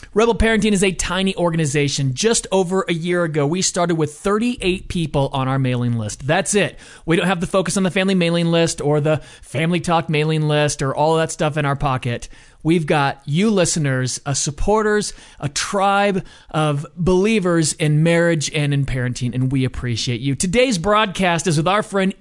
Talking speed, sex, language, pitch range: 190 wpm, male, English, 150-210 Hz